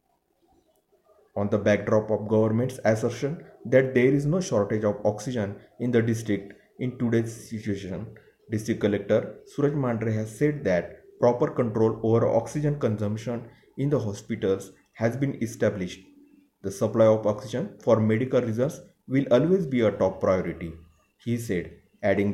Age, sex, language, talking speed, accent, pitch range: 30-49, male, Marathi, 140 wpm, native, 105-130 Hz